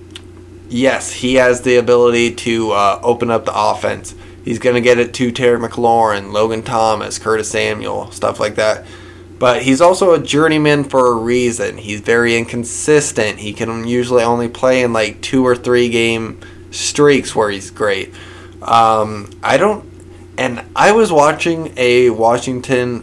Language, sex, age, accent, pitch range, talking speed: English, male, 20-39, American, 110-130 Hz, 160 wpm